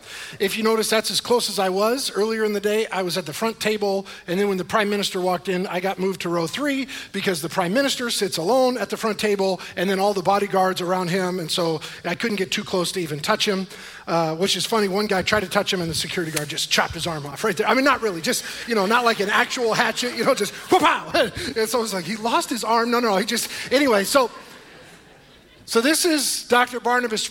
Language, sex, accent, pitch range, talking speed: English, male, American, 170-215 Hz, 260 wpm